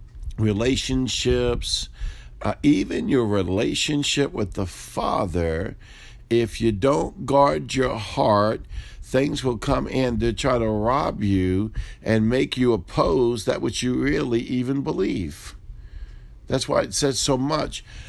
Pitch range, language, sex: 100-135 Hz, English, male